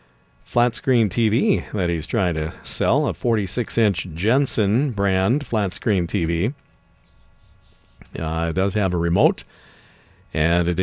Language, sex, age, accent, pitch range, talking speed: English, male, 50-69, American, 95-120 Hz, 115 wpm